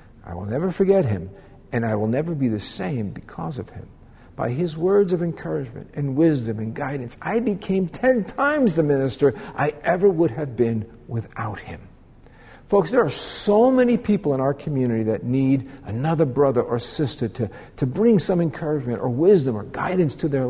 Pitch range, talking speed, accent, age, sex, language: 115-170 Hz, 185 wpm, American, 50-69, male, English